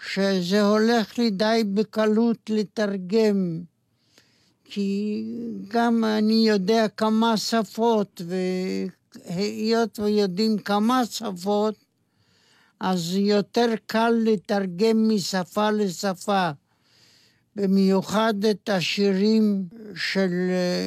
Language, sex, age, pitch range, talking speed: Hebrew, male, 60-79, 190-220 Hz, 75 wpm